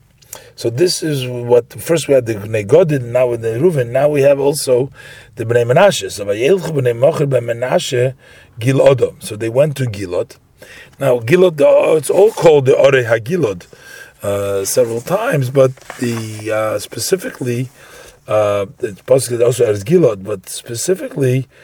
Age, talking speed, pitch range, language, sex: 40-59, 135 wpm, 115-150 Hz, English, male